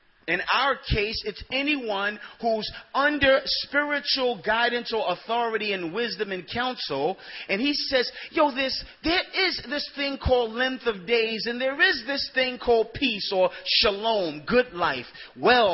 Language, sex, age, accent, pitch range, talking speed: English, male, 30-49, American, 205-270 Hz, 155 wpm